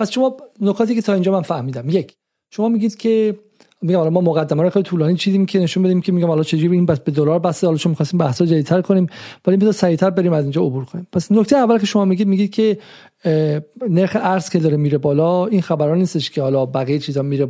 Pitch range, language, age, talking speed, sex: 150-190 Hz, Persian, 40-59, 235 wpm, male